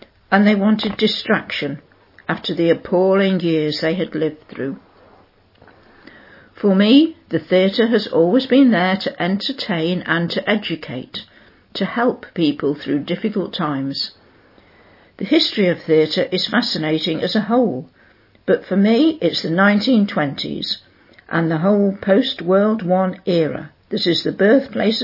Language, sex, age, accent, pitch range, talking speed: English, female, 60-79, British, 160-215 Hz, 135 wpm